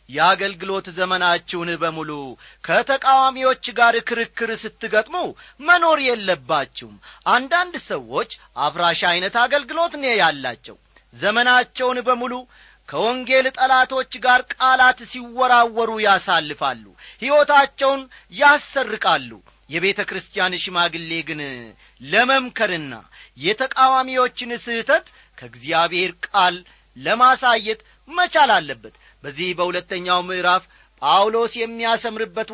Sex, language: male, Amharic